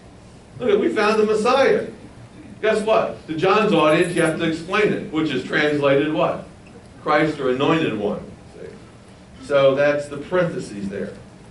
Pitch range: 125-170 Hz